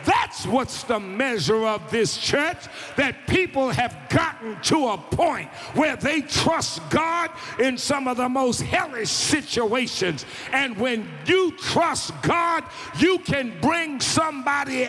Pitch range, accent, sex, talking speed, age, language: 230-295 Hz, American, male, 135 wpm, 50-69, English